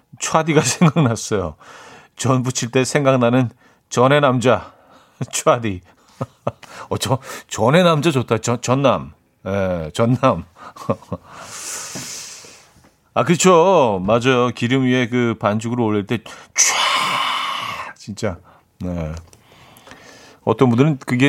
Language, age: Korean, 40-59